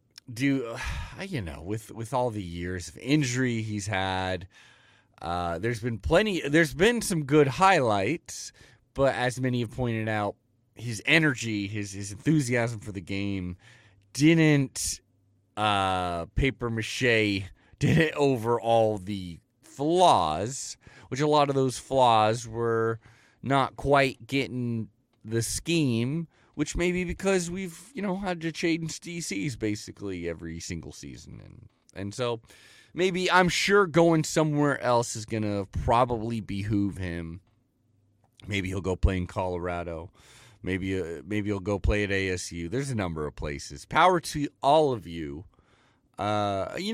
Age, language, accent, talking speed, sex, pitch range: 30-49, English, American, 145 wpm, male, 100-140 Hz